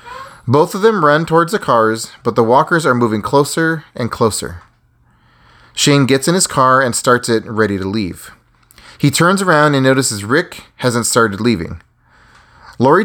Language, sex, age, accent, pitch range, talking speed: English, male, 30-49, American, 115-155 Hz, 165 wpm